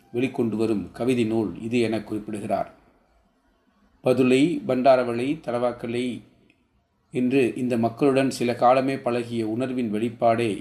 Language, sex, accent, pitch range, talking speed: Tamil, male, native, 115-135 Hz, 100 wpm